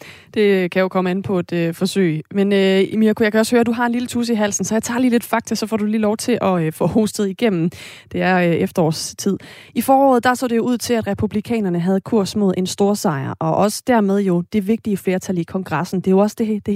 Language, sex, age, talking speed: Danish, female, 30-49, 270 wpm